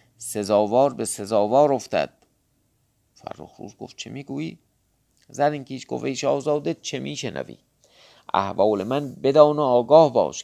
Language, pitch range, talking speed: Persian, 105-140 Hz, 125 wpm